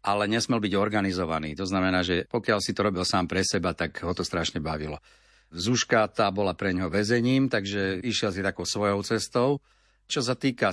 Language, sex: Slovak, male